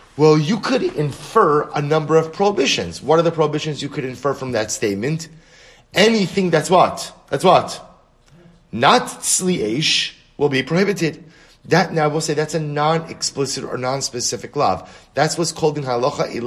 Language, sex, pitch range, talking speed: English, male, 120-160 Hz, 170 wpm